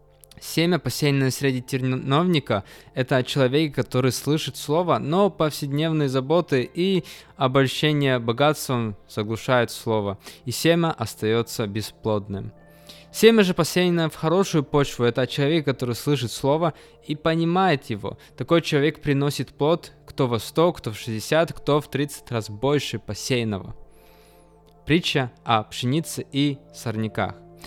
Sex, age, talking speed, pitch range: male, 20-39, 120 wpm, 120-160 Hz